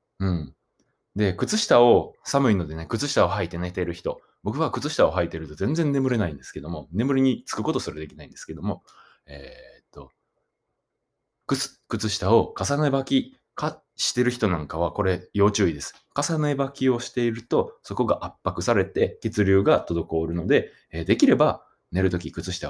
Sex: male